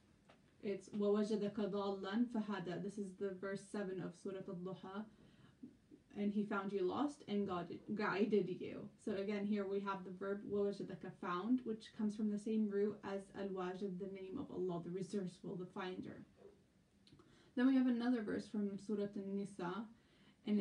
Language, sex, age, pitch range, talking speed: English, female, 10-29, 195-225 Hz, 165 wpm